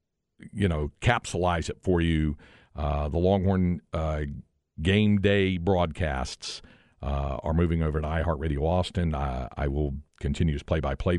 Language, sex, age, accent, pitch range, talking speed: English, male, 50-69, American, 80-100 Hz, 140 wpm